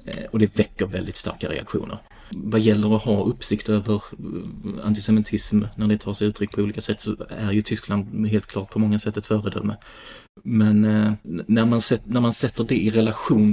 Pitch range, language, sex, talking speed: 105-110 Hz, Swedish, male, 170 wpm